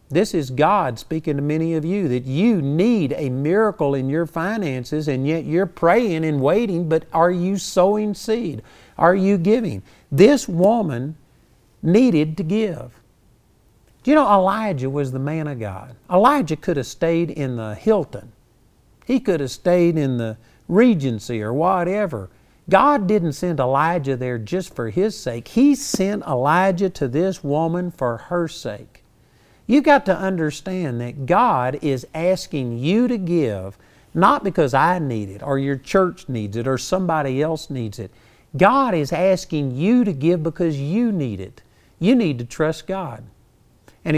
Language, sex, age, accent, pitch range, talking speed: English, male, 50-69, American, 130-190 Hz, 165 wpm